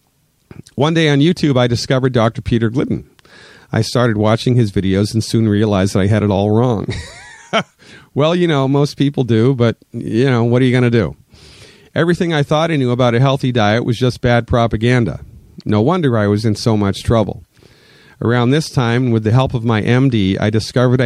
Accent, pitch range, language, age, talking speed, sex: American, 105-130 Hz, English, 40-59, 200 wpm, male